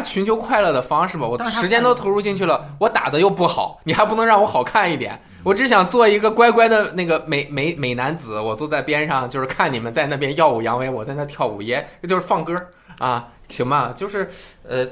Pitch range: 120-190 Hz